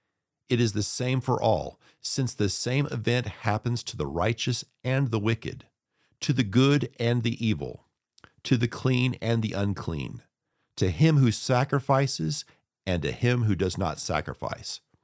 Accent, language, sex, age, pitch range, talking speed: American, English, male, 50-69, 100-135 Hz, 160 wpm